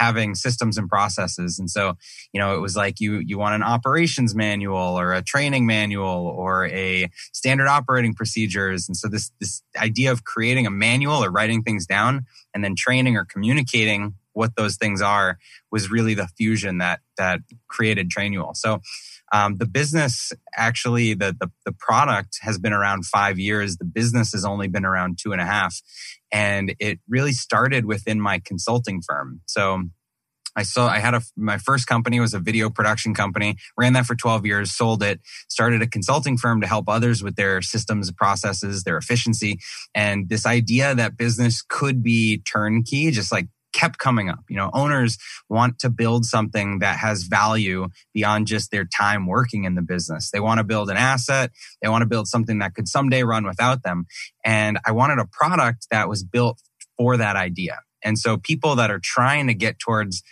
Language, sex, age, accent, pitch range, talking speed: English, male, 20-39, American, 100-120 Hz, 190 wpm